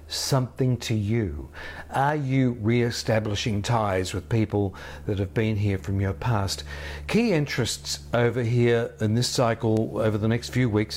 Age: 50-69